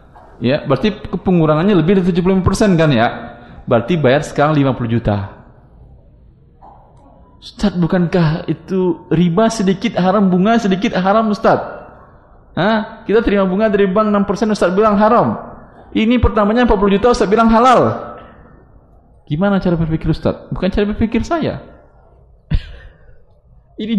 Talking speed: 125 wpm